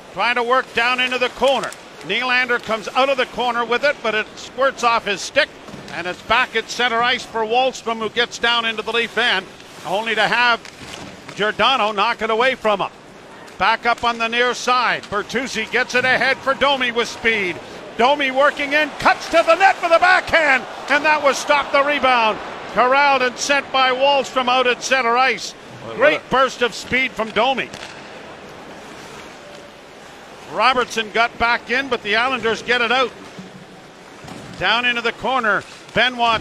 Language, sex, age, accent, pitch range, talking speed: English, male, 50-69, American, 220-255 Hz, 175 wpm